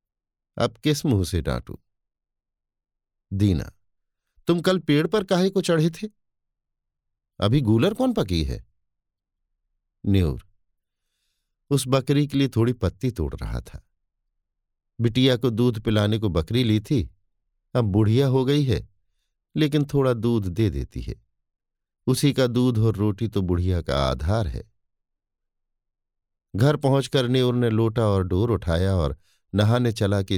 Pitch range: 90-120 Hz